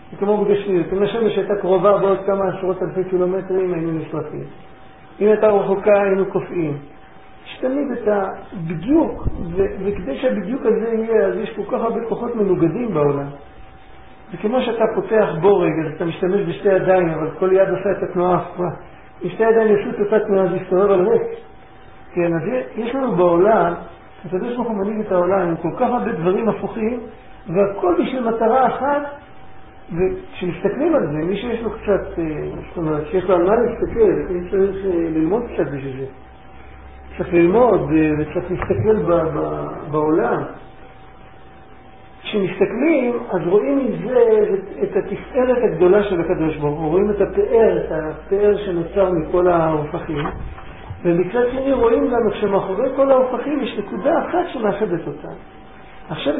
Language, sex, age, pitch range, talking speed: Hebrew, male, 50-69, 175-220 Hz, 145 wpm